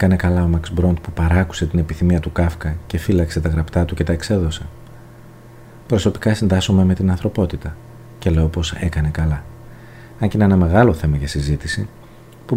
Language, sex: Greek, male